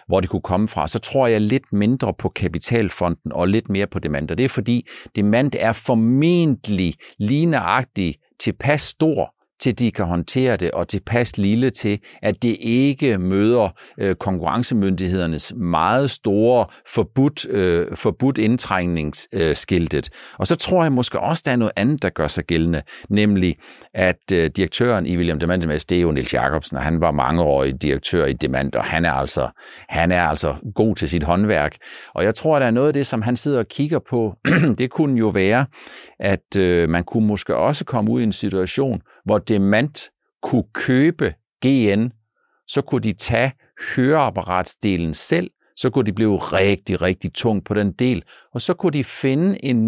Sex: male